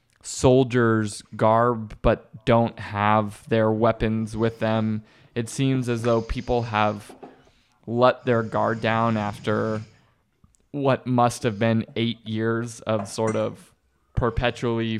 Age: 20-39